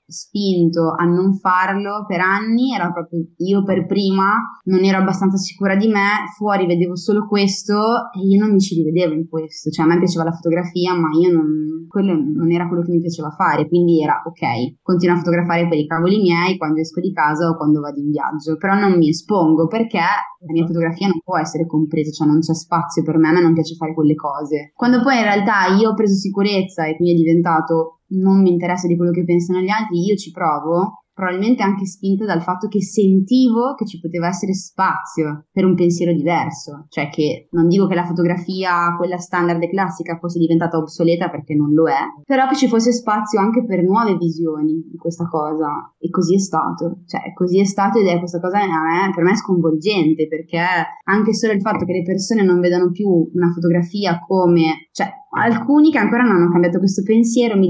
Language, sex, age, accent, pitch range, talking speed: Italian, female, 20-39, native, 165-195 Hz, 210 wpm